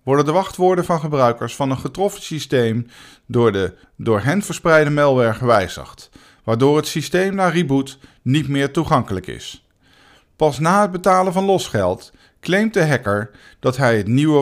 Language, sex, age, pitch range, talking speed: Dutch, male, 50-69, 110-160 Hz, 160 wpm